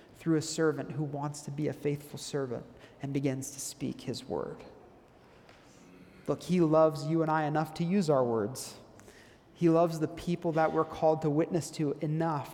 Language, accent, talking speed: English, American, 180 wpm